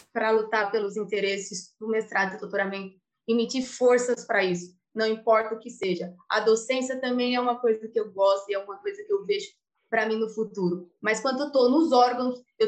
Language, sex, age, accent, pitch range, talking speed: Portuguese, female, 20-39, Brazilian, 220-260 Hz, 215 wpm